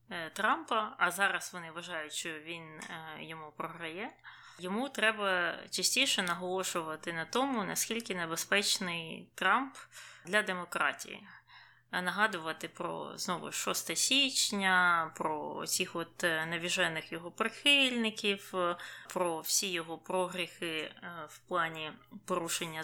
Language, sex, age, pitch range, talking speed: Ukrainian, female, 20-39, 170-215 Hz, 105 wpm